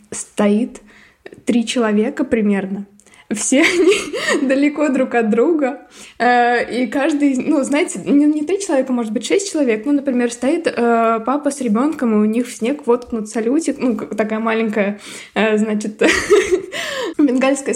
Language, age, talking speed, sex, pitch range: Russian, 20-39, 130 wpm, female, 215-275 Hz